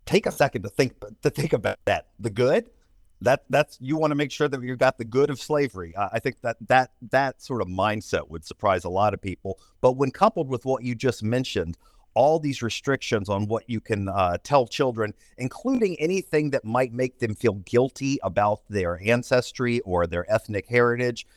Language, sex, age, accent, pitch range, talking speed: English, male, 50-69, American, 100-125 Hz, 200 wpm